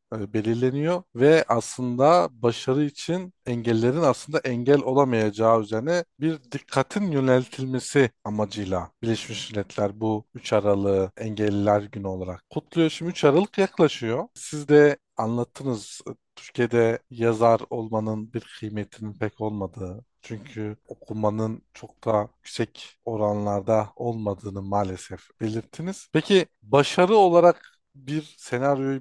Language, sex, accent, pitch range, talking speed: Turkish, male, native, 110-150 Hz, 105 wpm